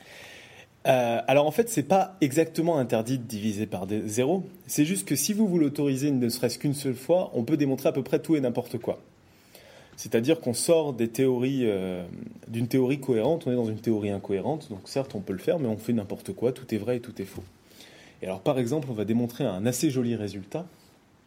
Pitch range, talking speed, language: 115-150 Hz, 225 wpm, French